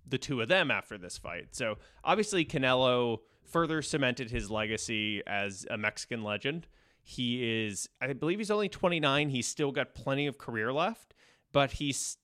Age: 20-39